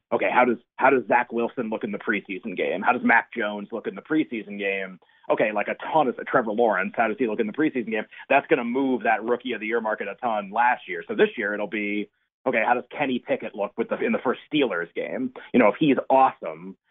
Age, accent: 30-49, American